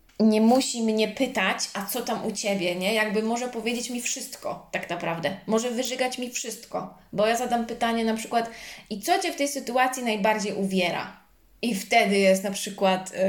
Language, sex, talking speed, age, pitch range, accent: Polish, female, 180 wpm, 20-39, 195-230 Hz, native